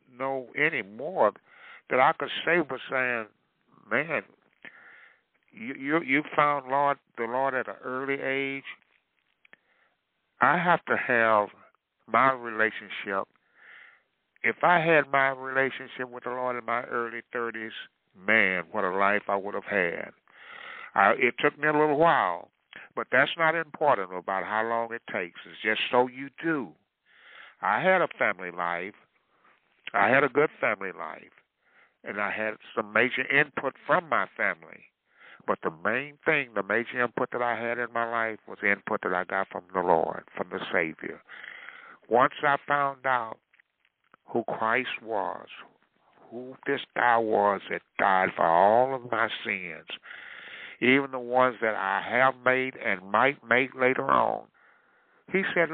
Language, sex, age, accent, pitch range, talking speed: English, male, 60-79, American, 115-140 Hz, 155 wpm